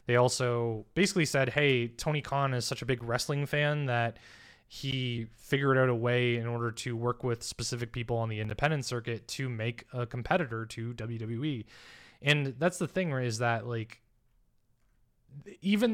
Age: 20-39